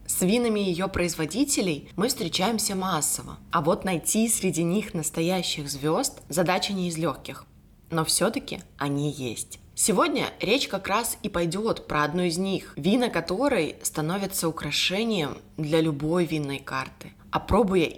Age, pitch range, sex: 20-39, 150-190 Hz, female